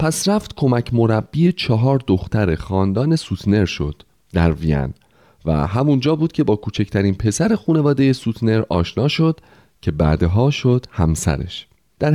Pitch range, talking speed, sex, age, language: 95-150 Hz, 135 wpm, male, 30-49, Persian